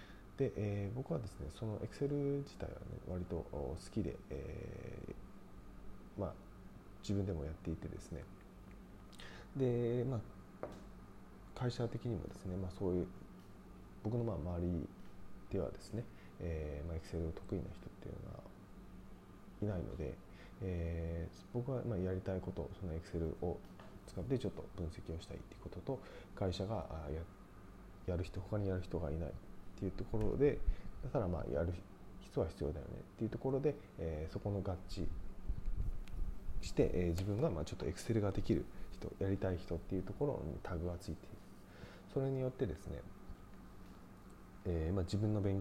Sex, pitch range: male, 90-100 Hz